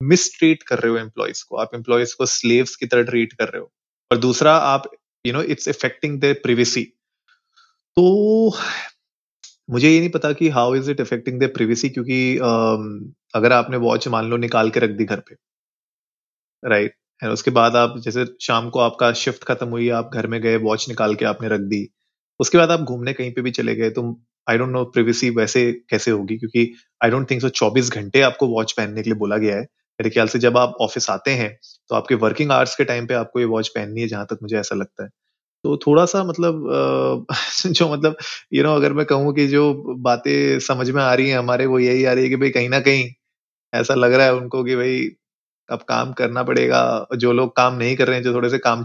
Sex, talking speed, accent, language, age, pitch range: male, 220 wpm, native, Hindi, 30-49, 115-135 Hz